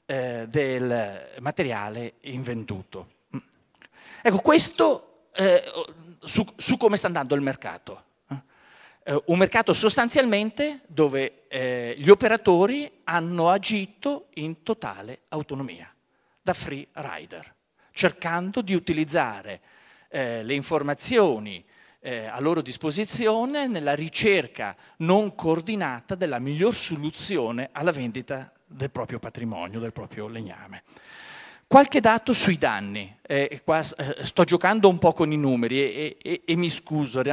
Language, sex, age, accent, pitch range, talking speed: Italian, male, 40-59, native, 135-185 Hz, 115 wpm